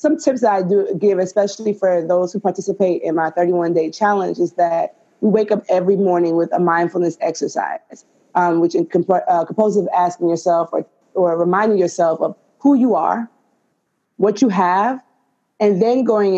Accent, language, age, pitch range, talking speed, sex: American, English, 20-39, 175-215 Hz, 170 wpm, female